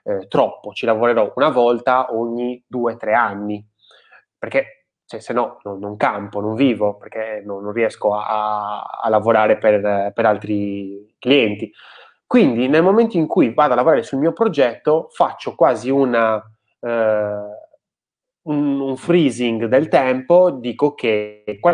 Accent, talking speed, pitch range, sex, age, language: native, 145 wpm, 110-155 Hz, male, 20-39, Italian